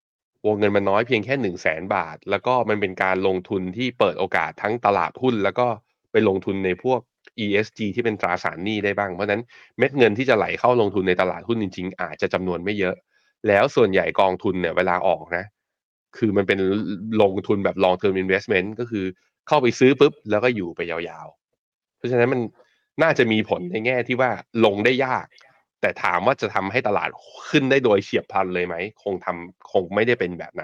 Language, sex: Thai, male